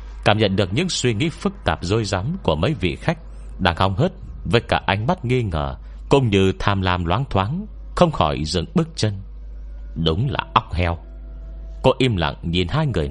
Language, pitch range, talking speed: Vietnamese, 65-110 Hz, 200 wpm